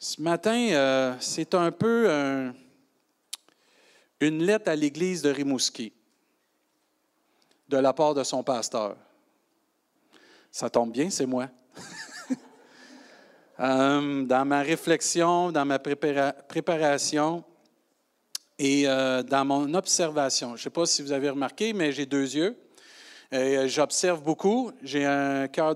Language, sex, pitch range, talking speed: French, male, 140-180 Hz, 130 wpm